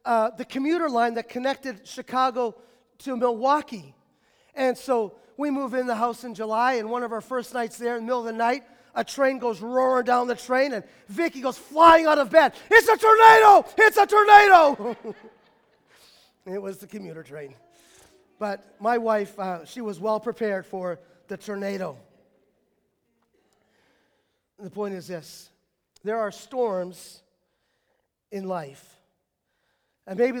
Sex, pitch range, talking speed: male, 180-245 Hz, 155 wpm